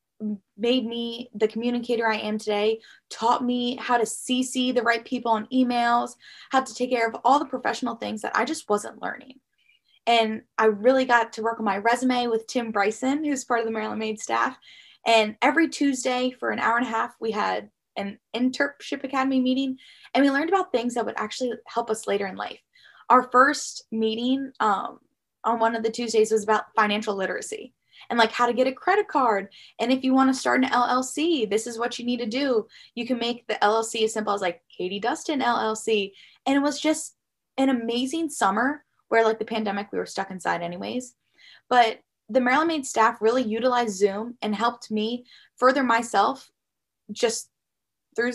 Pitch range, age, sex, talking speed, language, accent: 220-260 Hz, 10-29, female, 195 wpm, English, American